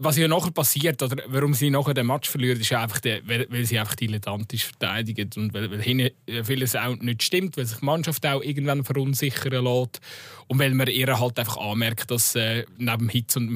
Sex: male